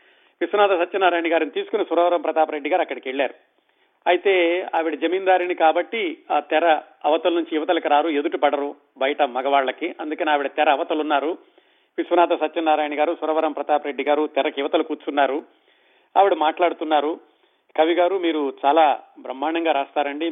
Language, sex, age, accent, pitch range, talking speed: Telugu, male, 40-59, native, 145-190 Hz, 130 wpm